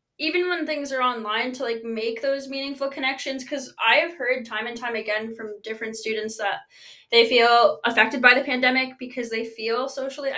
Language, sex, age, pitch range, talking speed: English, female, 20-39, 225-275 Hz, 190 wpm